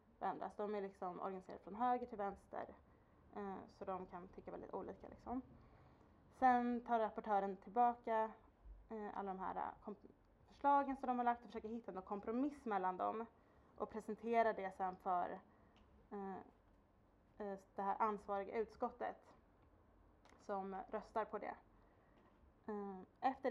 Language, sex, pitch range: Swedish, female, 190-230 Hz